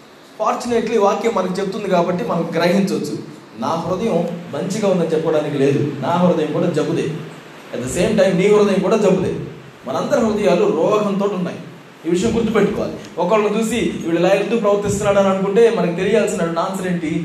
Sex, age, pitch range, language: male, 20-39, 160-205 Hz, Telugu